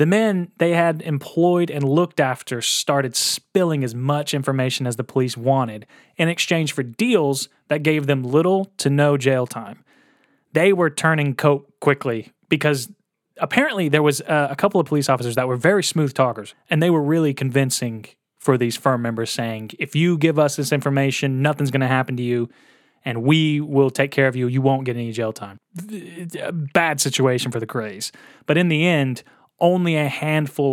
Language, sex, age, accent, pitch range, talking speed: English, male, 20-39, American, 135-195 Hz, 185 wpm